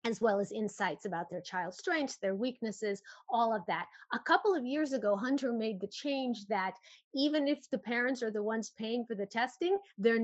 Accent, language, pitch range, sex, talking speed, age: American, English, 205-255 Hz, female, 205 wpm, 30-49